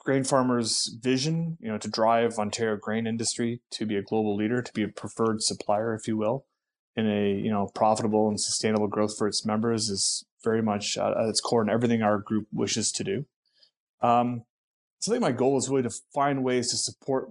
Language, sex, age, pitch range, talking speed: English, male, 30-49, 110-125 Hz, 210 wpm